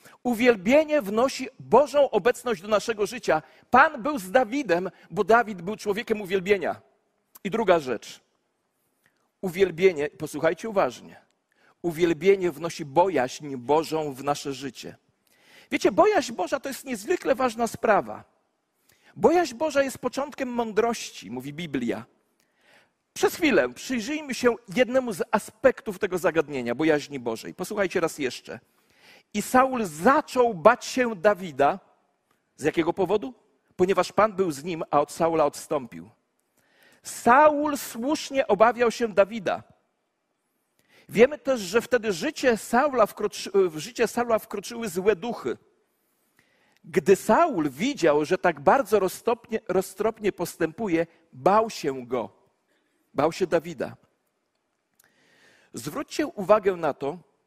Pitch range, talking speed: 175-250 Hz, 115 wpm